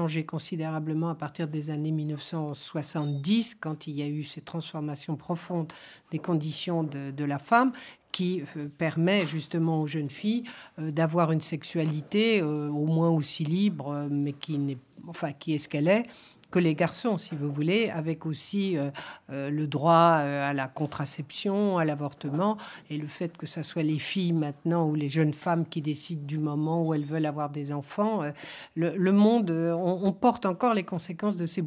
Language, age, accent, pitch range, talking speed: French, 60-79, French, 155-190 Hz, 185 wpm